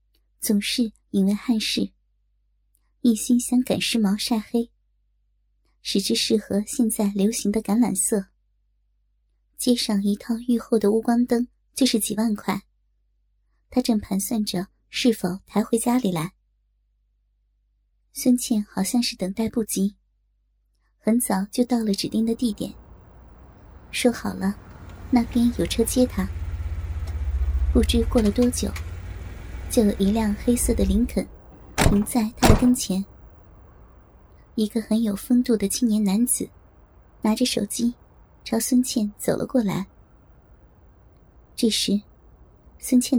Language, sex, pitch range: Chinese, male, 195-240 Hz